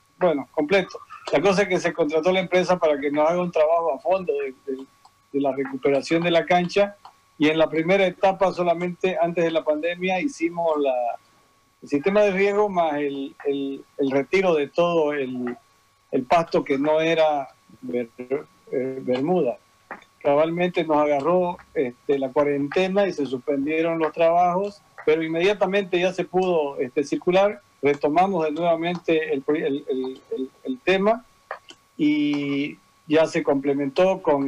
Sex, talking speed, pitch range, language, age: male, 155 wpm, 140-180 Hz, Spanish, 50-69